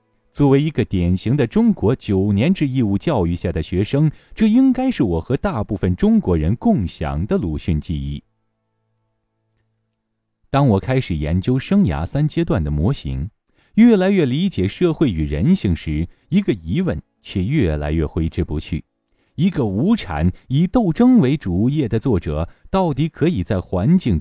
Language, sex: Chinese, male